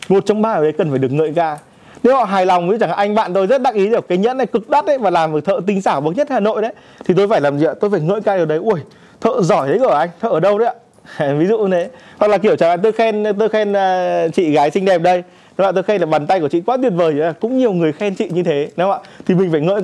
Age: 20-39